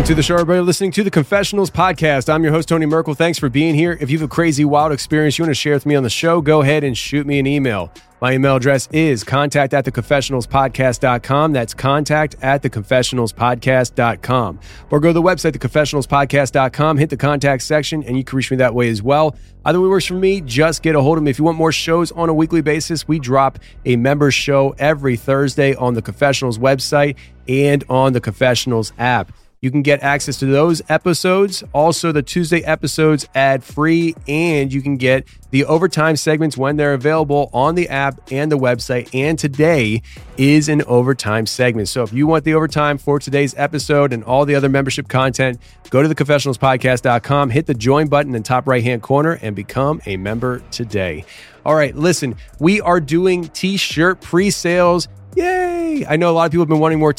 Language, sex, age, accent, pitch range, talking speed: English, male, 30-49, American, 130-160 Hz, 205 wpm